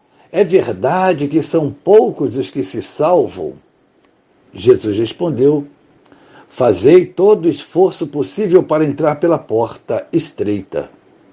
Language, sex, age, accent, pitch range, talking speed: Portuguese, male, 60-79, Brazilian, 145-190 Hz, 110 wpm